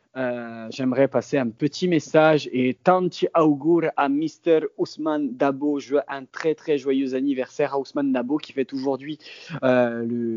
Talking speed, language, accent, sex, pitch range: 160 wpm, French, French, male, 120-140 Hz